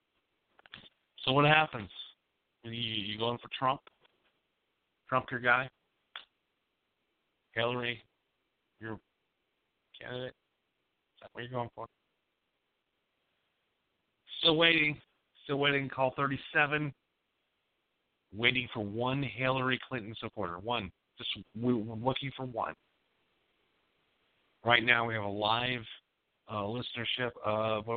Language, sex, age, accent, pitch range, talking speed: English, male, 50-69, American, 100-130 Hz, 105 wpm